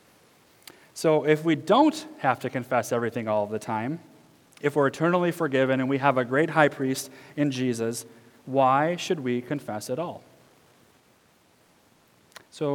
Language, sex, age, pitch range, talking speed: English, male, 30-49, 120-155 Hz, 145 wpm